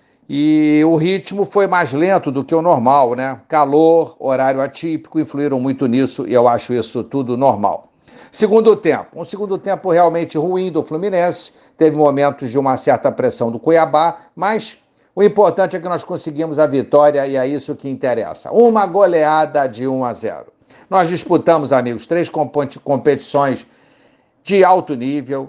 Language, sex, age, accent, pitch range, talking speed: Portuguese, male, 60-79, Brazilian, 135-165 Hz, 160 wpm